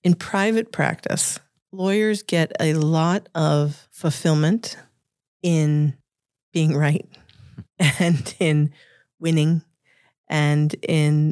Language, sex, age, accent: English, female, 40-59, American